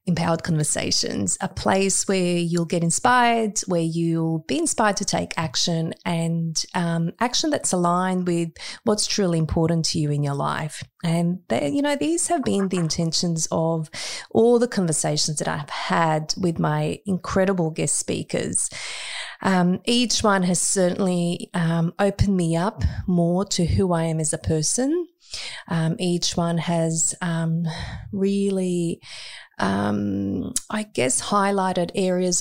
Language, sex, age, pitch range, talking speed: English, female, 30-49, 165-200 Hz, 140 wpm